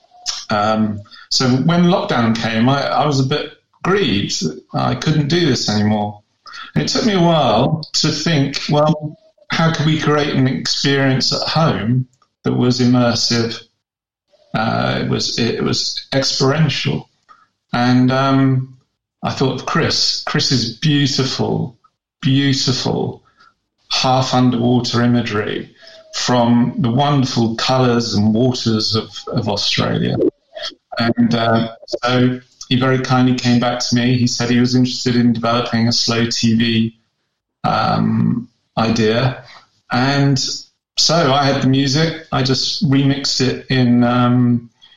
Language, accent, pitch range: English, British, 120-140 Hz